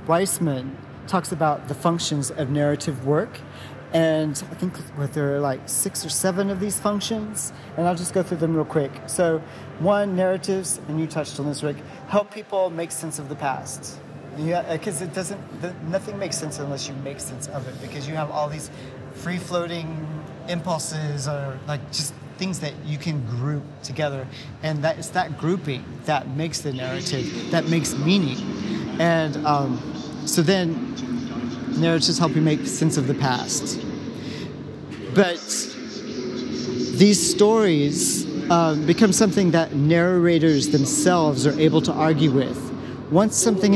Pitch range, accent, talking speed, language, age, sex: 145-175 Hz, American, 155 wpm, English, 30-49, male